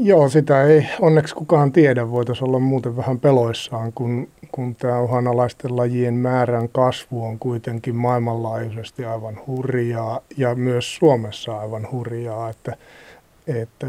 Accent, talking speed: native, 130 wpm